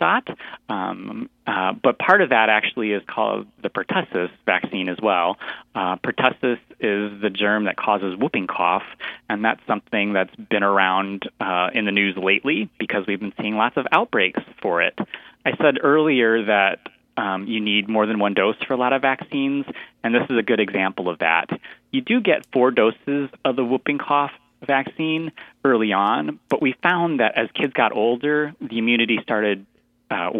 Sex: male